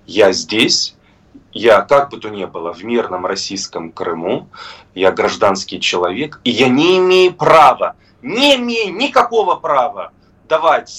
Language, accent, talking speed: Russian, native, 135 wpm